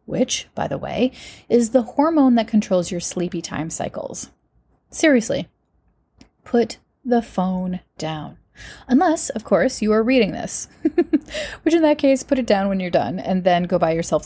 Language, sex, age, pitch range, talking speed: English, female, 30-49, 180-230 Hz, 170 wpm